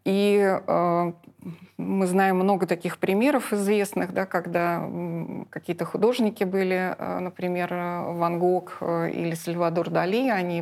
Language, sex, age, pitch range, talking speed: Russian, female, 30-49, 170-200 Hz, 115 wpm